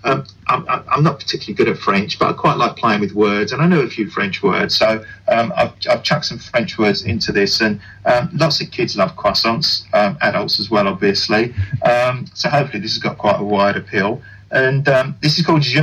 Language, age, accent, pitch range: English, 30-49, British, 140-185 Hz